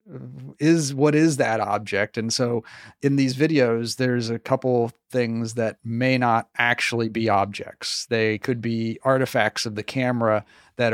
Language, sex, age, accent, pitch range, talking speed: English, male, 30-49, American, 115-135 Hz, 155 wpm